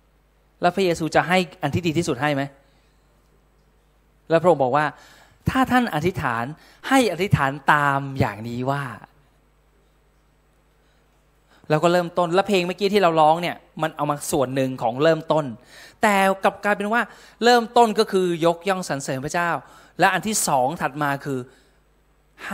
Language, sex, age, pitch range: Thai, male, 20-39, 140-185 Hz